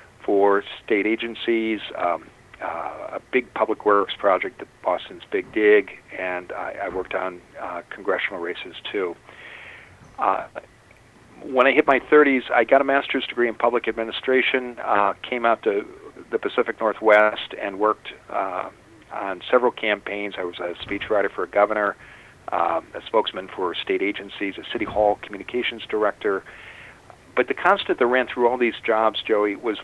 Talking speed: 160 wpm